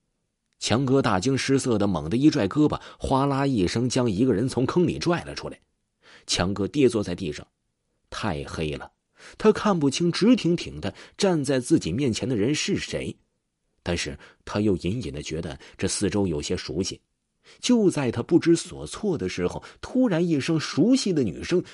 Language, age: Chinese, 30-49